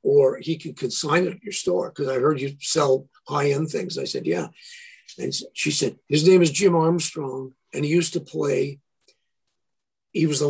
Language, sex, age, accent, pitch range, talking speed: English, male, 50-69, American, 150-195 Hz, 195 wpm